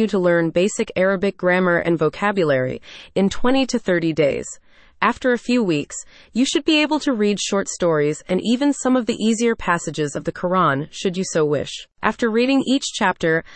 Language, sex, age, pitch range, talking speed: English, female, 30-49, 170-235 Hz, 185 wpm